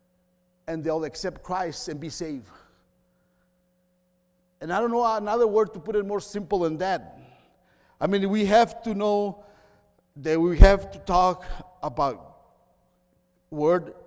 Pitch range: 155-200 Hz